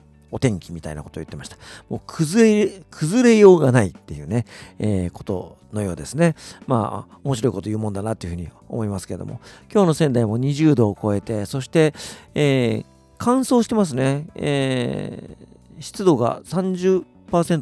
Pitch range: 95-145 Hz